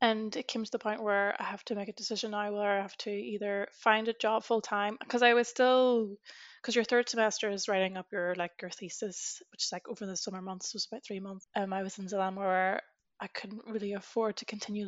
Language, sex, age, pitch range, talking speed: English, female, 20-39, 190-220 Hz, 255 wpm